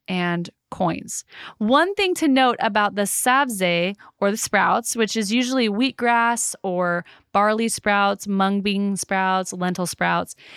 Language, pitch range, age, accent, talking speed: English, 190-235 Hz, 20-39, American, 135 wpm